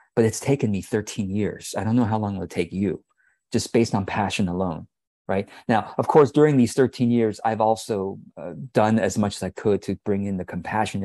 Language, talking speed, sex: English, 225 wpm, male